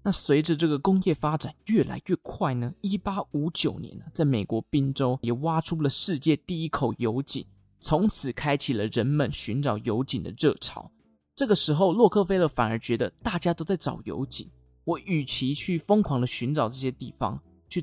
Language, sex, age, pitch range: Chinese, male, 20-39, 125-170 Hz